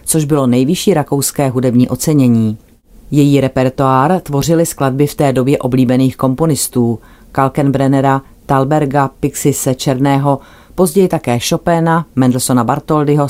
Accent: native